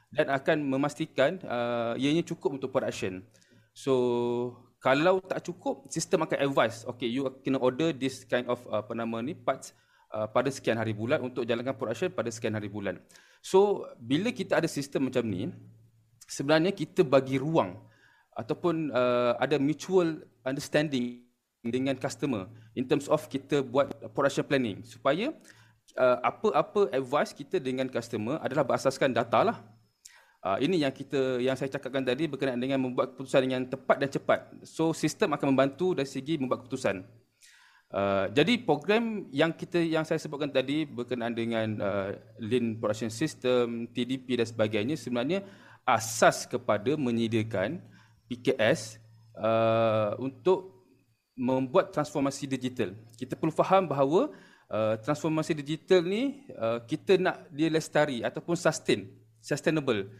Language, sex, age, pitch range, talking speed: Malay, male, 20-39, 115-155 Hz, 140 wpm